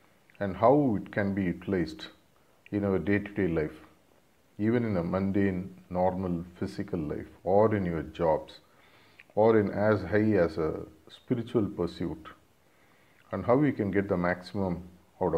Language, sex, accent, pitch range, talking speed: English, male, Indian, 90-105 Hz, 145 wpm